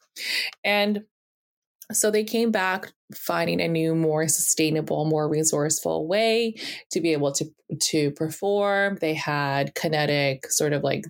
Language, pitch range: English, 150-205 Hz